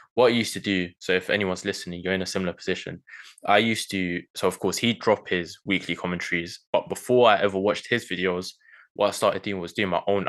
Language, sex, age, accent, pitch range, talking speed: English, male, 10-29, British, 90-100 Hz, 235 wpm